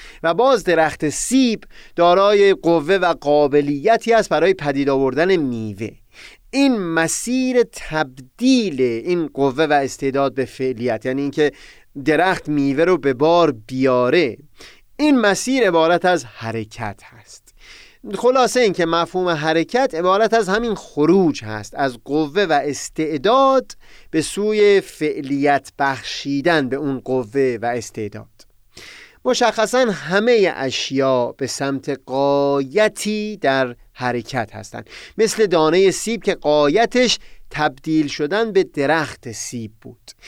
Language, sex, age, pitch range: Persian, male, 30-49, 130-205 Hz